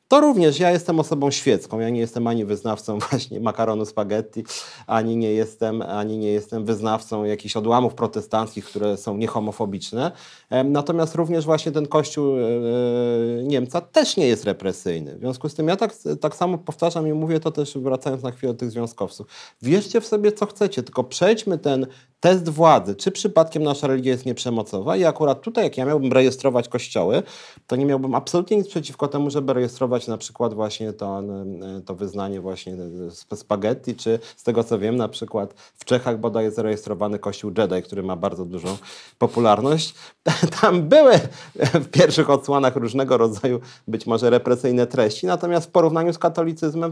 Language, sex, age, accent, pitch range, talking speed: Polish, male, 40-59, native, 110-160 Hz, 170 wpm